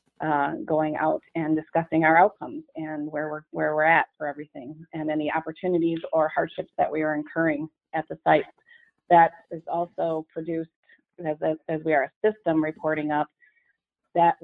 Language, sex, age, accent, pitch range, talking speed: English, female, 30-49, American, 155-170 Hz, 165 wpm